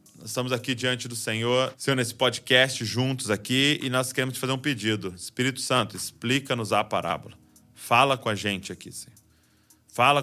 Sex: male